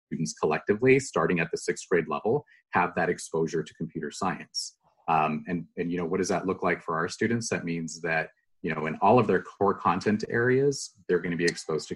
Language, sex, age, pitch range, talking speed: English, male, 30-49, 80-105 Hz, 225 wpm